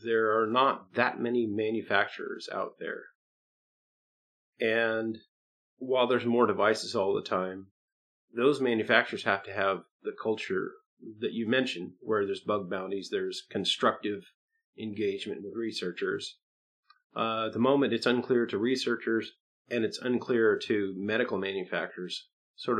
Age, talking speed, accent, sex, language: 40-59, 130 wpm, American, male, English